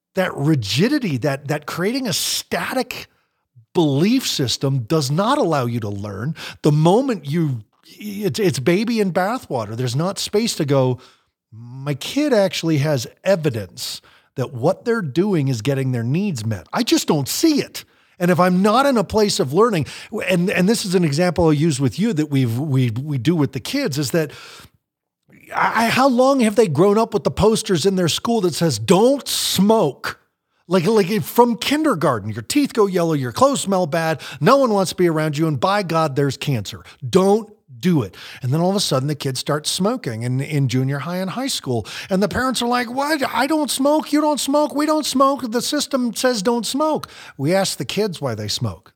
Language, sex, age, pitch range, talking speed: English, male, 40-59, 140-215 Hz, 200 wpm